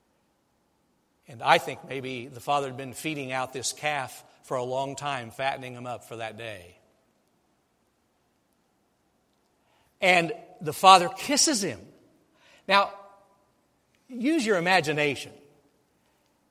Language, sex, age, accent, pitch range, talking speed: English, male, 60-79, American, 140-190 Hz, 115 wpm